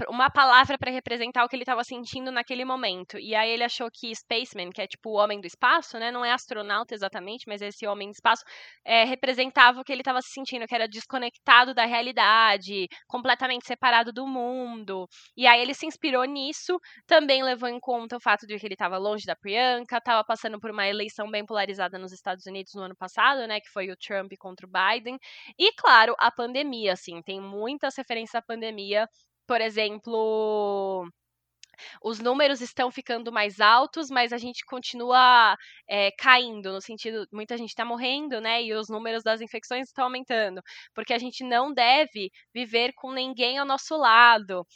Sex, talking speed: female, 185 wpm